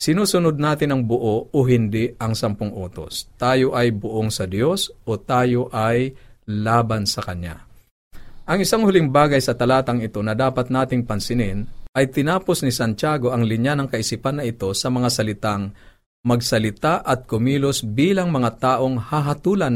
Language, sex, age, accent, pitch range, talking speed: Filipino, male, 50-69, native, 110-135 Hz, 155 wpm